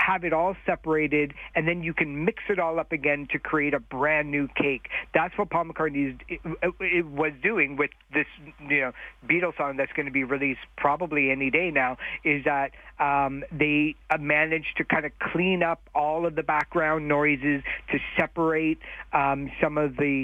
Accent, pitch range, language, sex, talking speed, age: American, 145-170 Hz, English, male, 180 wpm, 50-69